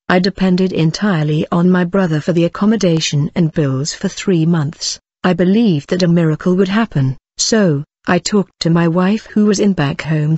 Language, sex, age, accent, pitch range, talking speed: English, female, 50-69, British, 160-195 Hz, 185 wpm